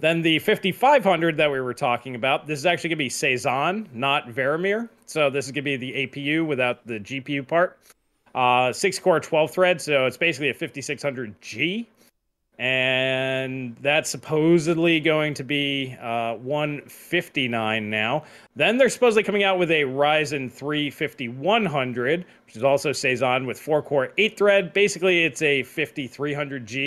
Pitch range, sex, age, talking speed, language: 130-170 Hz, male, 30-49, 155 wpm, English